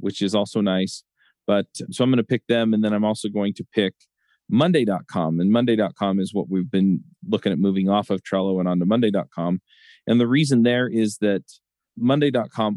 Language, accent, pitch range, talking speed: English, American, 95-110 Hz, 195 wpm